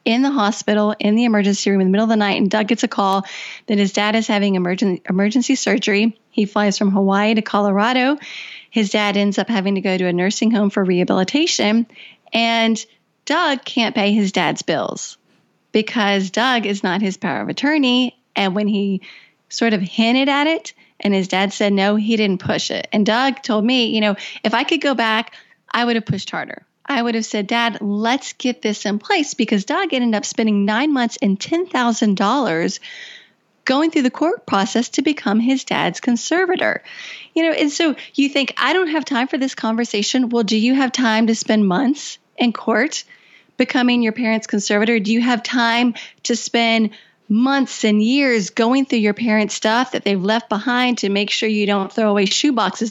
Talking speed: 200 wpm